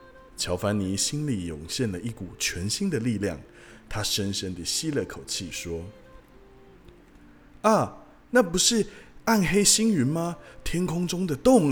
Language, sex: Chinese, male